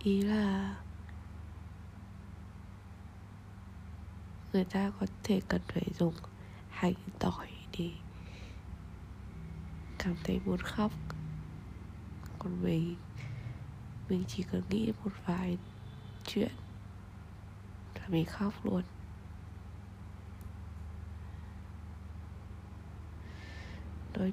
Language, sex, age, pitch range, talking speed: Vietnamese, female, 20-39, 90-105 Hz, 75 wpm